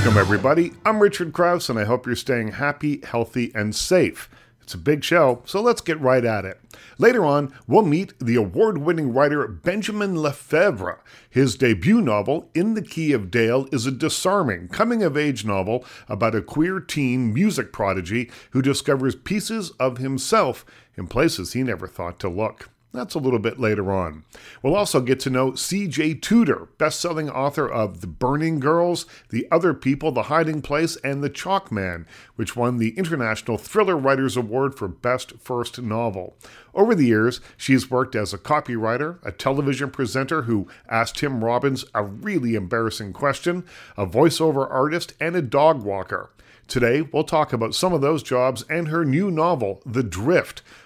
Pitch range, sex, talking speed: 115-160 Hz, male, 170 wpm